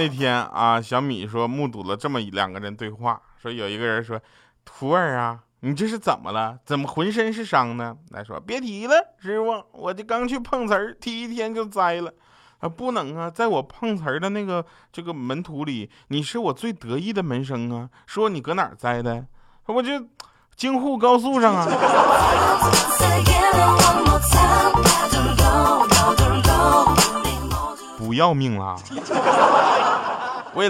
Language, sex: Chinese, male